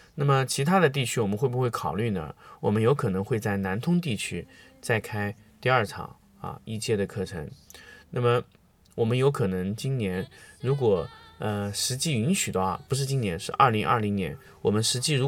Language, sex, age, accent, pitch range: Chinese, male, 20-39, native, 100-135 Hz